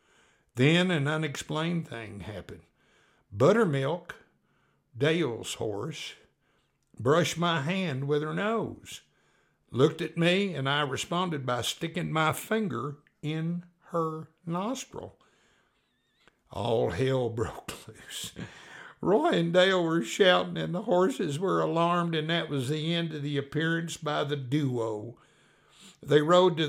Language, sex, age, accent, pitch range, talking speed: English, male, 60-79, American, 130-170 Hz, 125 wpm